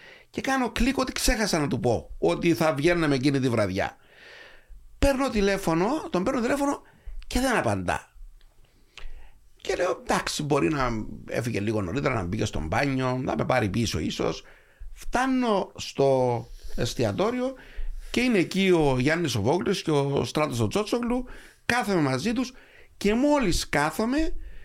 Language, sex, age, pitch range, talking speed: Greek, male, 60-79, 120-185 Hz, 140 wpm